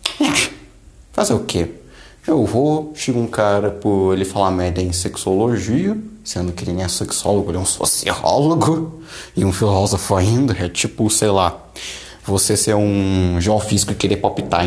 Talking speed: 160 wpm